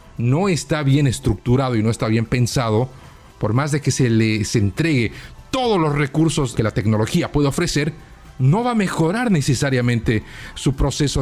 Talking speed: 165 wpm